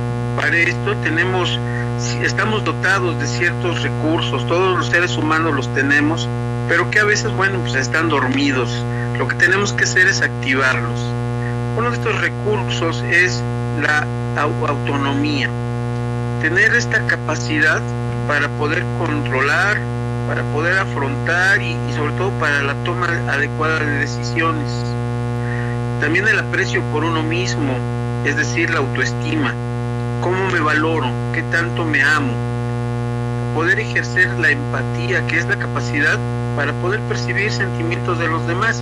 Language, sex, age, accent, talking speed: Spanish, male, 50-69, Mexican, 135 wpm